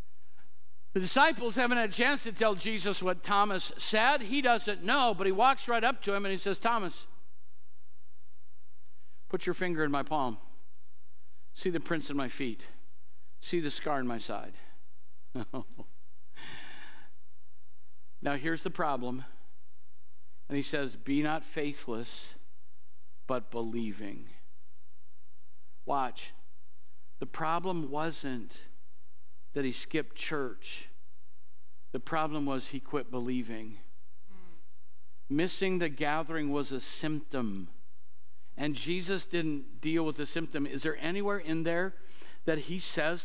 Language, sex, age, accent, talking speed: English, male, 60-79, American, 125 wpm